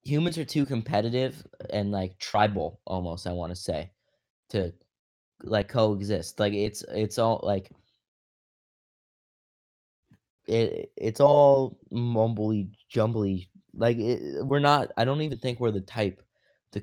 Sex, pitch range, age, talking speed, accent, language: male, 105-130 Hz, 20-39, 130 wpm, American, English